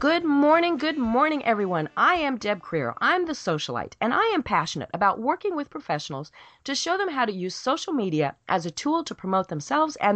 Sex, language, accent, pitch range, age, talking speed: female, English, American, 220-310 Hz, 40-59, 205 wpm